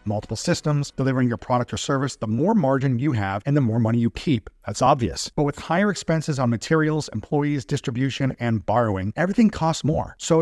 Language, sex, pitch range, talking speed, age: English, male, 125-160 Hz, 195 wpm, 50-69